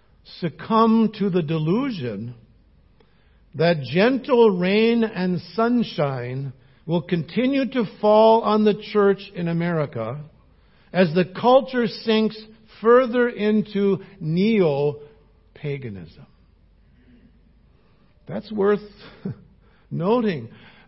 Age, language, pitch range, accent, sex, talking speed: 60-79, English, 135-210 Hz, American, male, 80 wpm